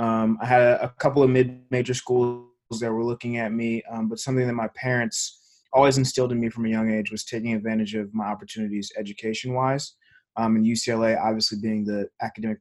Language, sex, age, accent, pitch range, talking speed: English, male, 20-39, American, 110-125 Hz, 190 wpm